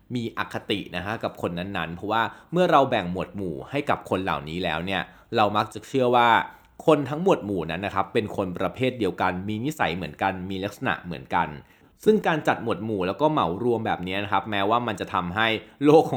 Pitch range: 95-130 Hz